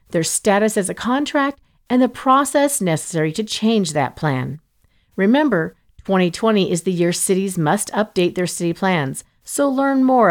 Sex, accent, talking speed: female, American, 155 wpm